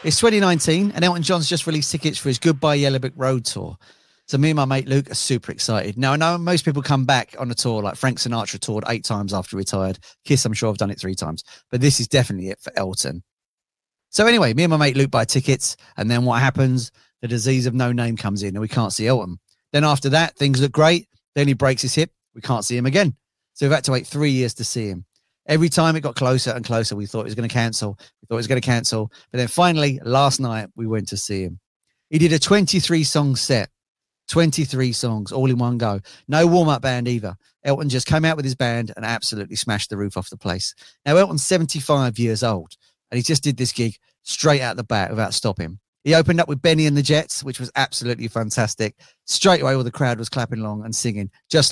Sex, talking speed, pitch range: male, 240 wpm, 110-145 Hz